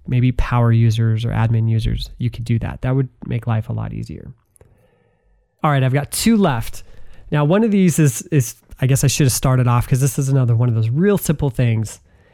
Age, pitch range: 20-39, 115-140 Hz